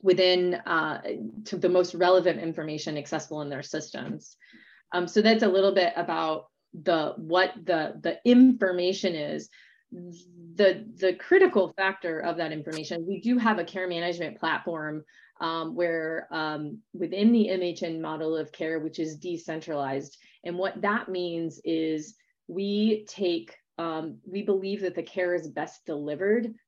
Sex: female